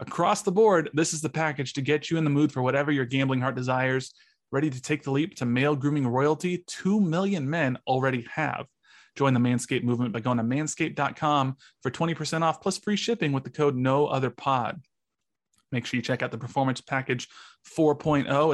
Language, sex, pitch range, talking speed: English, male, 130-155 Hz, 195 wpm